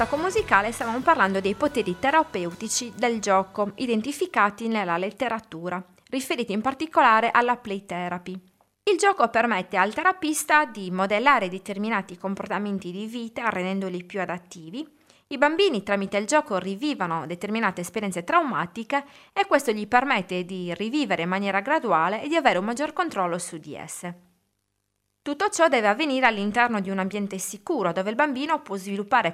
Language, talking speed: Italian, 145 wpm